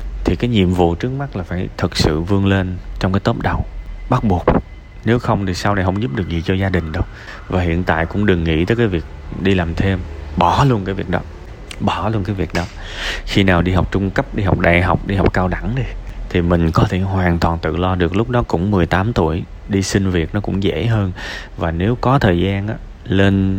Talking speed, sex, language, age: 245 wpm, male, Vietnamese, 20-39